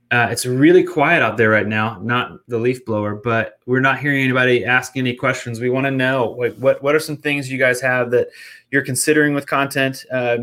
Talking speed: 225 wpm